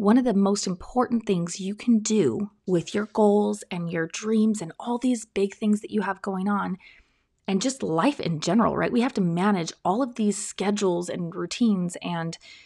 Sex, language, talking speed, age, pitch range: female, English, 200 wpm, 20-39, 190-230 Hz